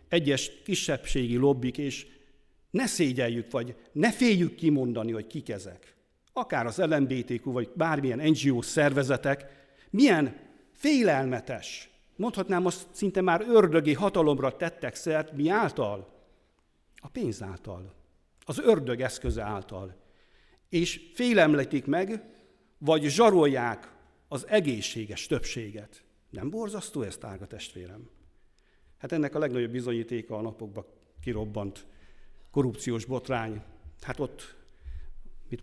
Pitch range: 105-145 Hz